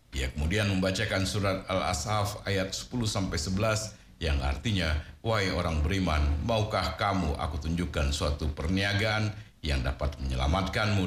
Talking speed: 115 wpm